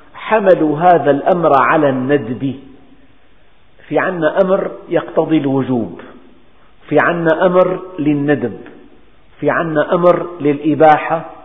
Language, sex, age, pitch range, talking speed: Arabic, male, 50-69, 145-190 Hz, 95 wpm